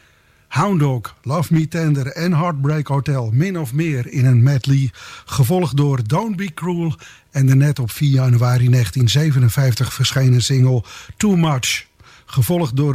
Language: English